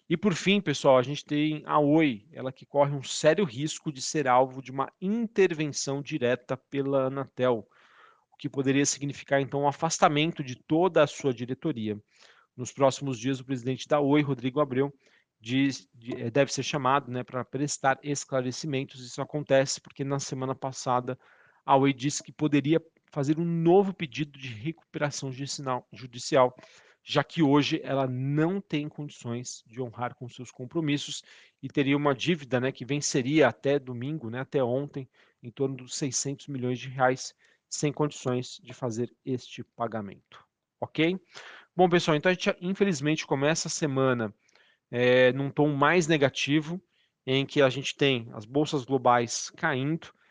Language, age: Portuguese, 40-59